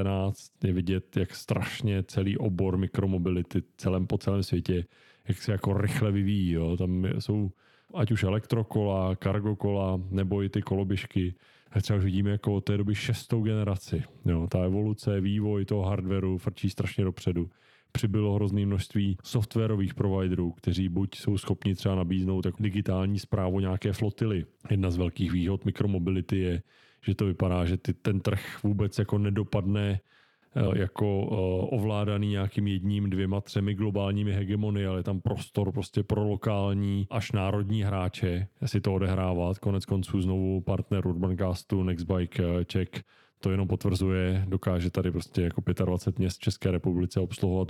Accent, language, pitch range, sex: native, Czech, 95-105 Hz, male